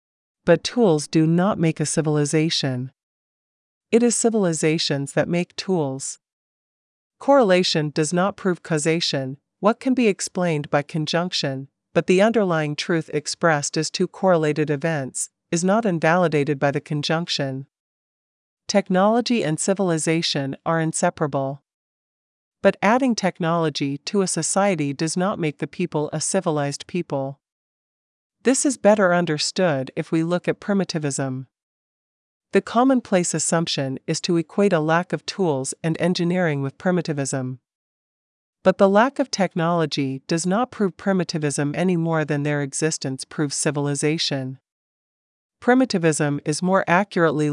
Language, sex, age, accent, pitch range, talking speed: English, female, 40-59, American, 145-185 Hz, 130 wpm